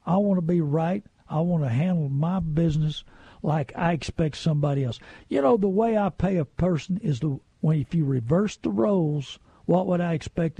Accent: American